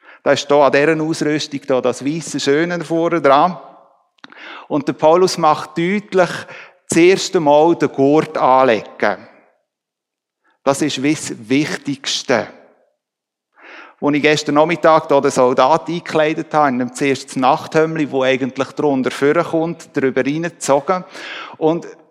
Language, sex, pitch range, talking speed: German, male, 130-160 Hz, 130 wpm